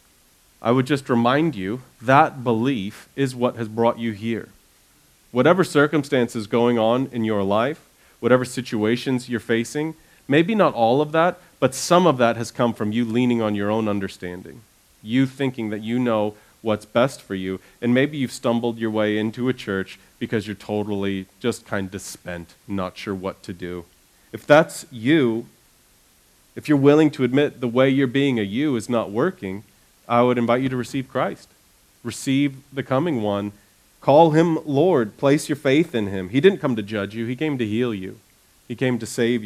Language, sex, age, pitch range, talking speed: English, male, 30-49, 105-135 Hz, 185 wpm